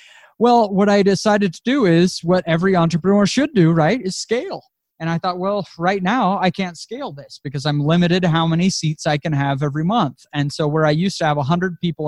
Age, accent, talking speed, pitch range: 20-39, American, 230 wpm, 150-190 Hz